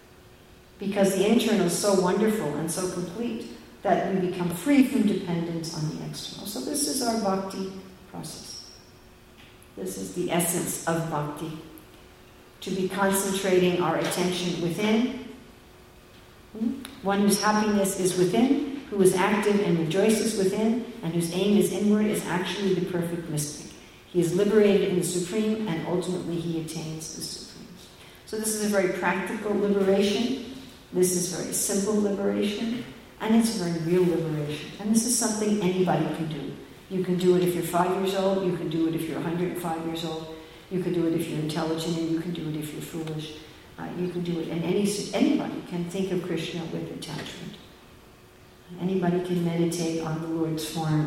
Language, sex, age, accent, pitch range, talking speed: English, female, 50-69, American, 165-200 Hz, 175 wpm